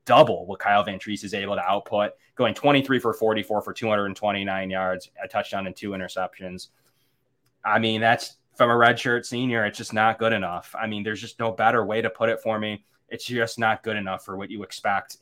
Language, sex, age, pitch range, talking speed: English, male, 20-39, 100-120 Hz, 210 wpm